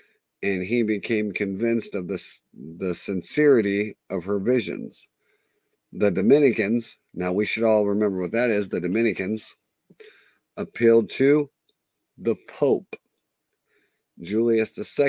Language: English